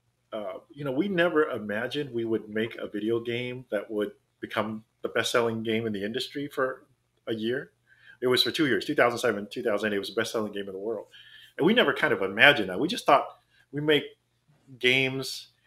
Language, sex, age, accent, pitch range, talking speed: English, male, 30-49, American, 110-130 Hz, 205 wpm